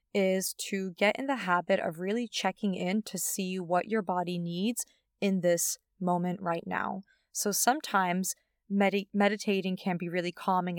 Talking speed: 155 wpm